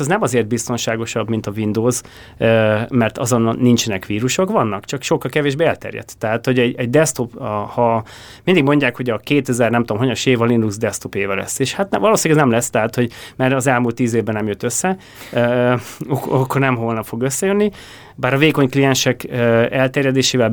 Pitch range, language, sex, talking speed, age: 115-135 Hz, Hungarian, male, 190 wpm, 30-49